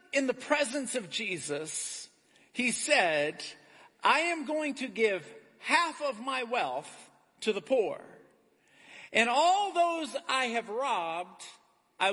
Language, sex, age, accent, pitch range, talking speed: Portuguese, male, 50-69, American, 200-290 Hz, 130 wpm